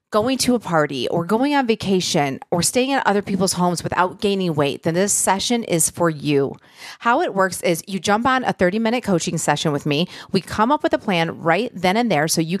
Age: 40-59